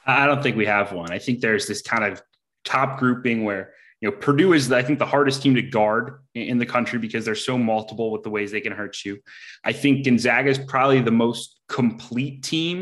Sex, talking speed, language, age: male, 230 wpm, English, 20-39